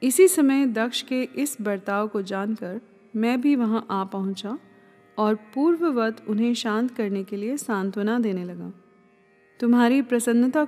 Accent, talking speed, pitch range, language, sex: native, 140 wpm, 205-255 Hz, Hindi, female